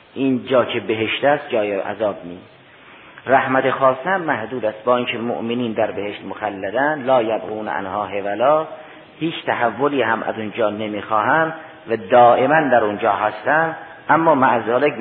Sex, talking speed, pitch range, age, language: male, 140 wpm, 110-145 Hz, 50-69, Persian